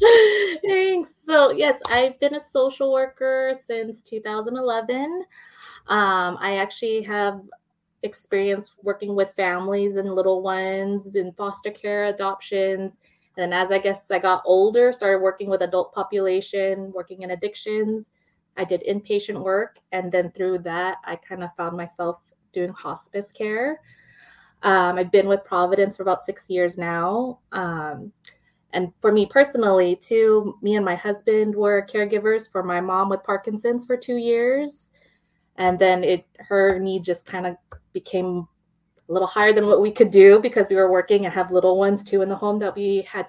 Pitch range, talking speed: 180-215 Hz, 160 wpm